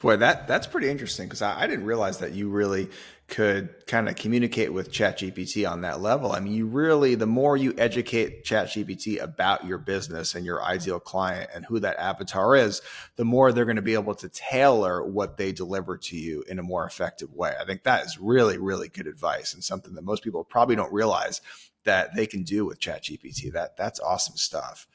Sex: male